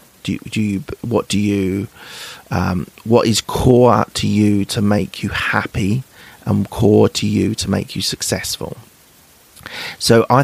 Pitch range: 95-115 Hz